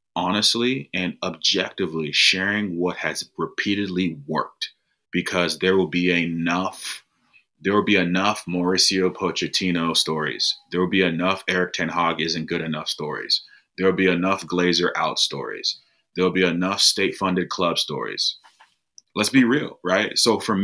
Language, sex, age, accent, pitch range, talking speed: English, male, 30-49, American, 85-95 Hz, 145 wpm